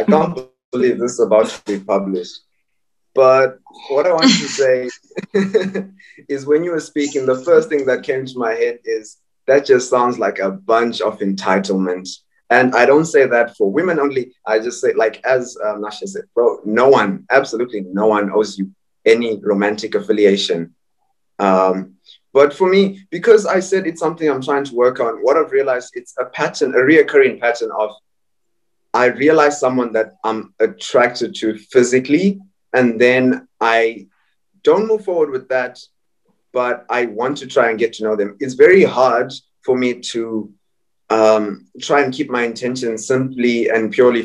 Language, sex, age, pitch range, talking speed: English, male, 20-39, 110-150 Hz, 175 wpm